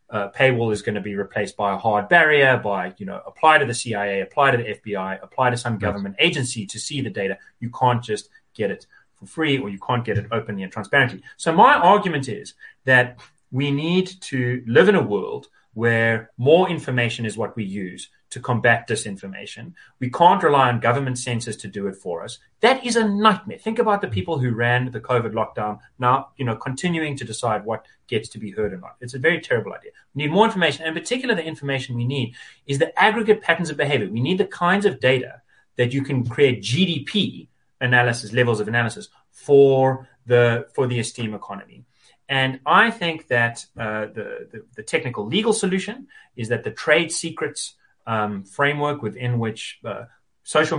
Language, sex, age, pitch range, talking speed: English, male, 30-49, 115-160 Hz, 200 wpm